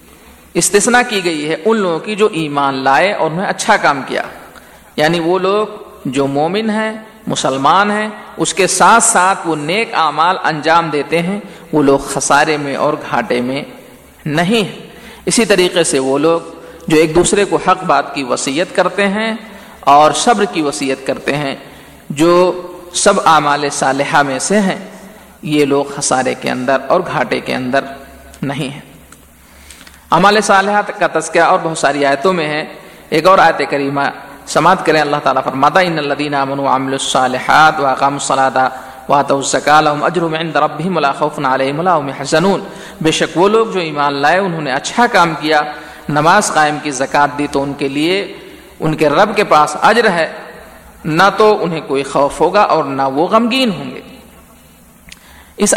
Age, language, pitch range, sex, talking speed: 50-69, Urdu, 140-195 Hz, male, 170 wpm